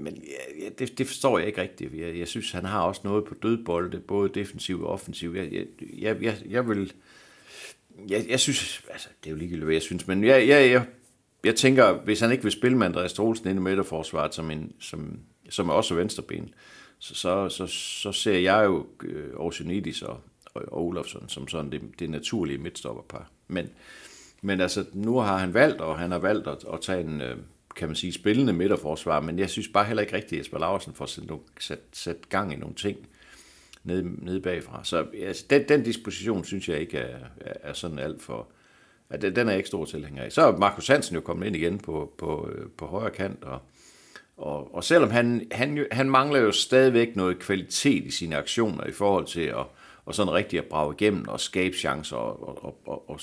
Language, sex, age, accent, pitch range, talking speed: Danish, male, 60-79, native, 85-115 Hz, 205 wpm